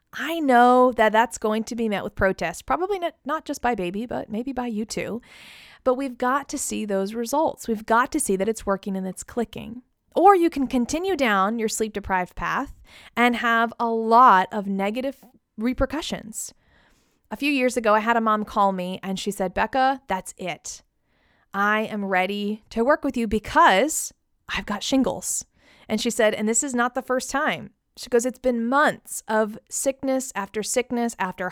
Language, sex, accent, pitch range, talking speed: English, female, American, 210-265 Hz, 190 wpm